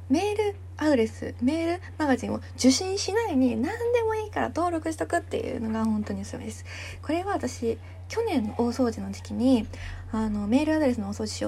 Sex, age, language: female, 20-39, Japanese